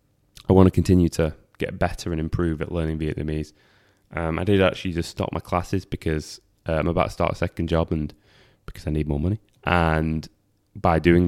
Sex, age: male, 20-39